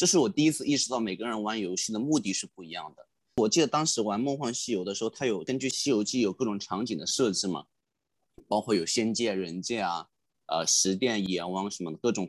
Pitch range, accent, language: 100-140 Hz, native, Chinese